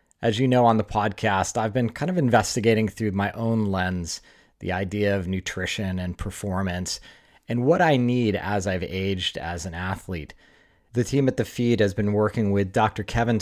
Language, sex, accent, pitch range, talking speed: English, male, American, 95-115 Hz, 190 wpm